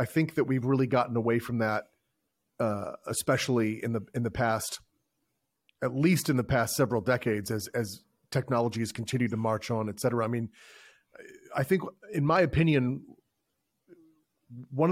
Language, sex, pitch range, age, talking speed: English, male, 120-140 Hz, 30-49, 165 wpm